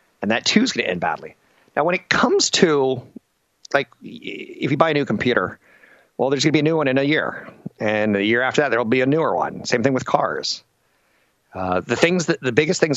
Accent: American